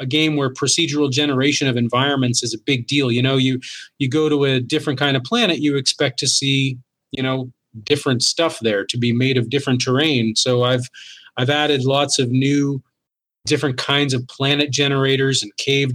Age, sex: 30-49, male